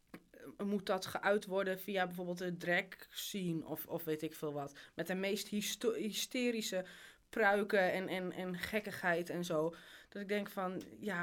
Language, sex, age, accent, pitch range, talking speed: Dutch, female, 20-39, Dutch, 180-240 Hz, 165 wpm